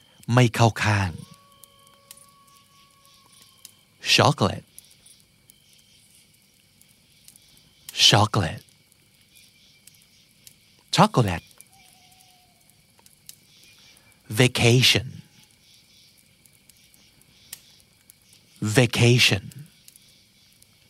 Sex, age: male, 60-79